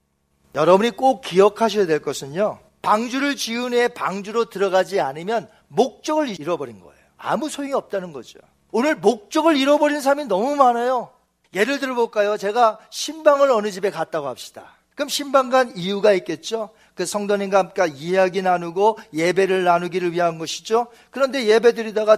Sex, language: male, Korean